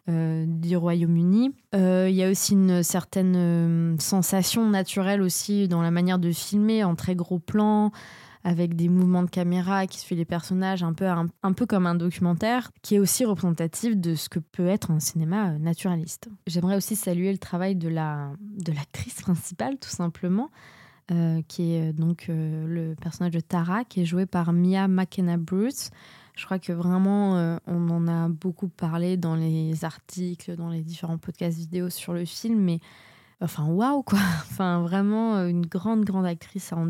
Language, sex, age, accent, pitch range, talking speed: French, female, 20-39, French, 170-195 Hz, 185 wpm